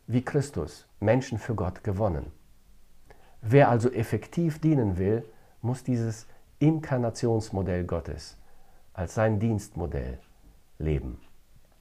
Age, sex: 50-69, male